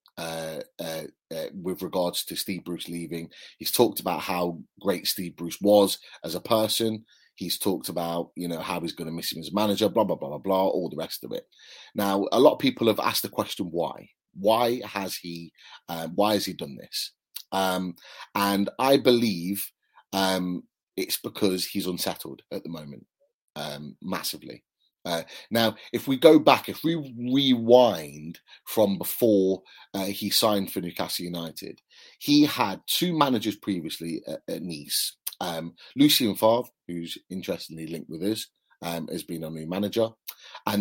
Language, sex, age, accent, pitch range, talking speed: English, male, 30-49, British, 85-110 Hz, 170 wpm